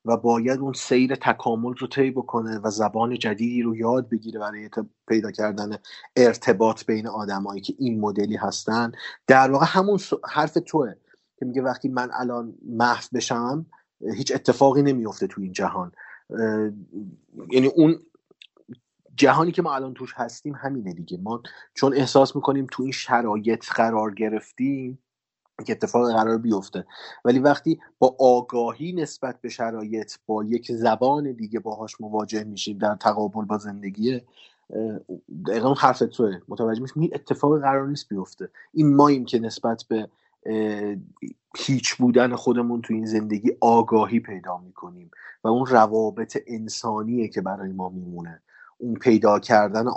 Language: Persian